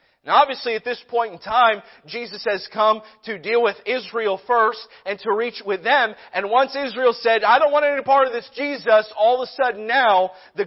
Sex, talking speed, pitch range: male, 215 wpm, 170-230 Hz